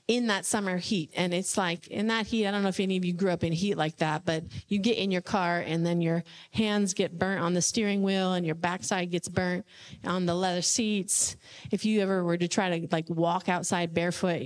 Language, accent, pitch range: English, American, 170-205 Hz